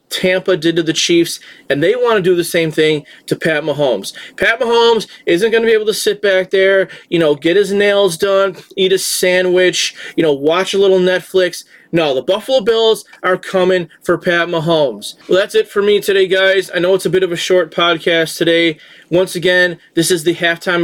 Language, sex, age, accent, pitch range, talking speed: English, male, 30-49, American, 170-190 Hz, 215 wpm